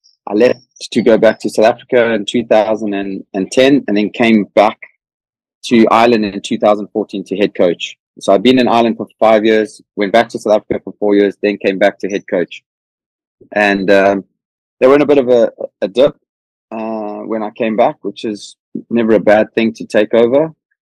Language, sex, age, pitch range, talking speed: English, male, 20-39, 105-125 Hz, 195 wpm